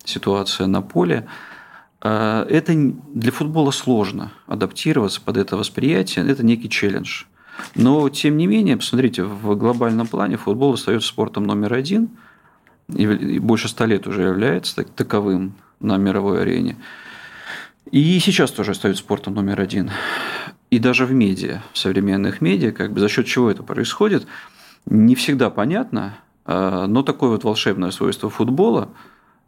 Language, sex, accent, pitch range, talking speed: Russian, male, native, 100-125 Hz, 135 wpm